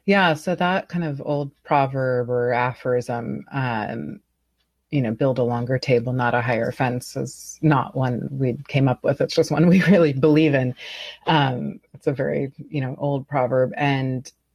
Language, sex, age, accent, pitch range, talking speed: English, female, 30-49, American, 125-155 Hz, 175 wpm